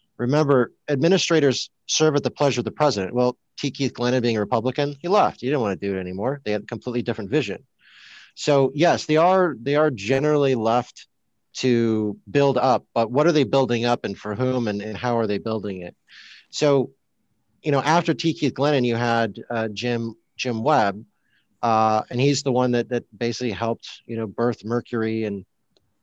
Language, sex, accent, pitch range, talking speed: English, male, American, 110-135 Hz, 195 wpm